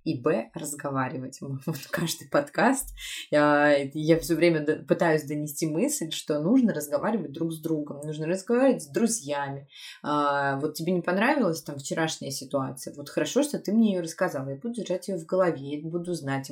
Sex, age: female, 20-39